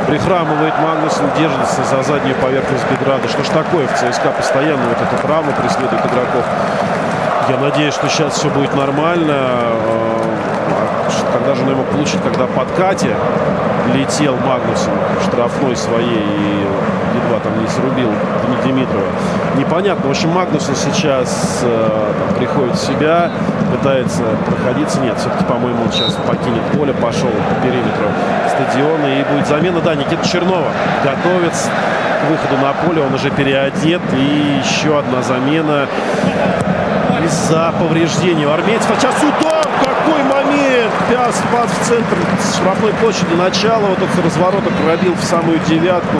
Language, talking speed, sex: Russian, 135 wpm, male